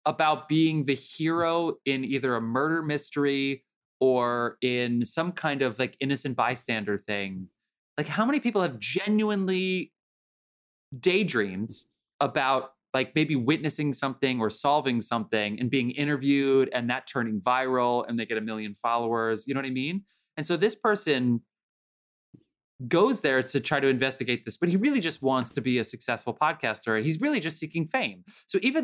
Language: English